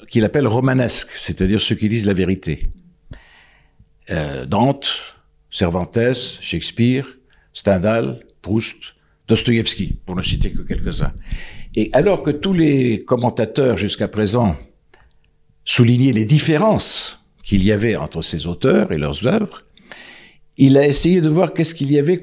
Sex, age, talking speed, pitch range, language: male, 60-79, 135 wpm, 100-145 Hz, French